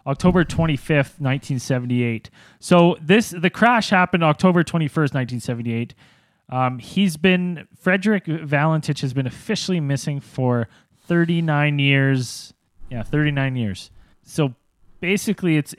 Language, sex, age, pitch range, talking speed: English, male, 20-39, 130-165 Hz, 110 wpm